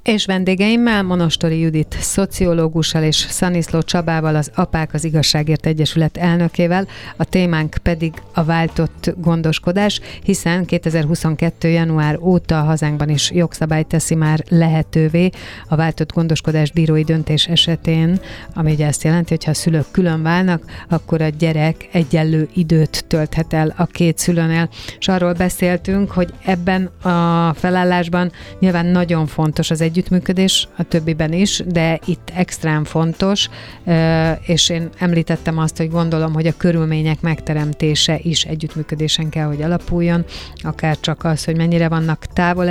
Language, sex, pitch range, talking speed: Hungarian, female, 155-175 Hz, 135 wpm